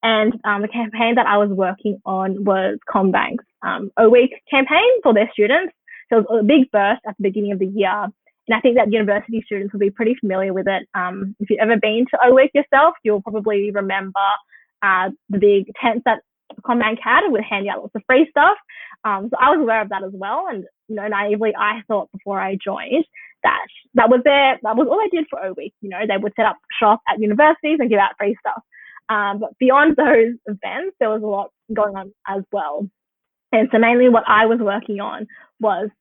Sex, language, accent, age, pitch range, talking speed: female, English, Australian, 20-39, 200-240 Hz, 220 wpm